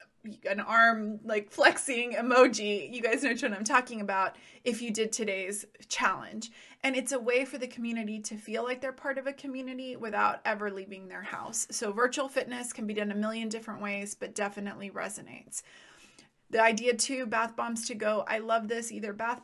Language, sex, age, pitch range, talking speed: English, female, 20-39, 210-245 Hz, 190 wpm